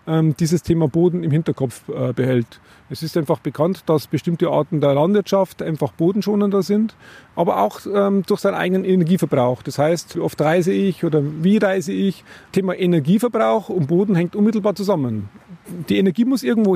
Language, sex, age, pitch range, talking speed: German, male, 40-59, 160-205 Hz, 170 wpm